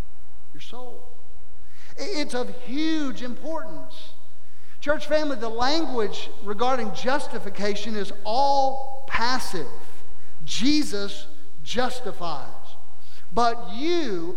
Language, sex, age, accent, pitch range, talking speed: English, male, 50-69, American, 190-255 Hz, 75 wpm